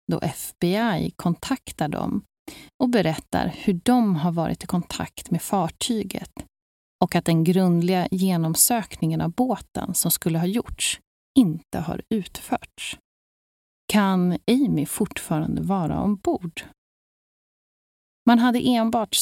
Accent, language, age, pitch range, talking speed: native, Swedish, 30-49, 160-215 Hz, 110 wpm